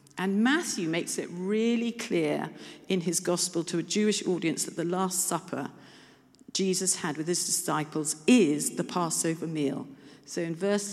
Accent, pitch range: British, 155-210 Hz